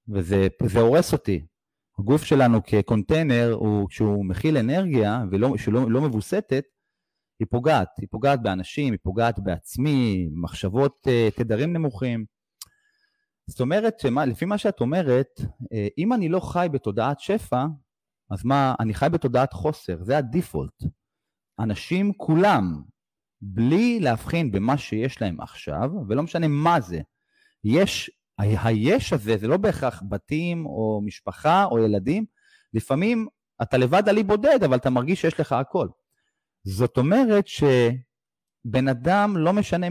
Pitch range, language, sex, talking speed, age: 110-165 Hz, Hebrew, male, 130 wpm, 30-49